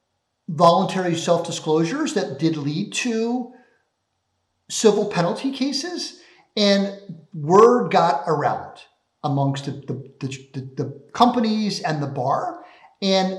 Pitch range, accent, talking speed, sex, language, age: 160-210 Hz, American, 105 wpm, male, English, 50-69